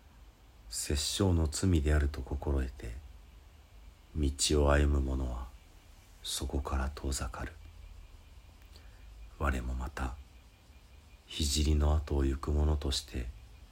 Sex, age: male, 50-69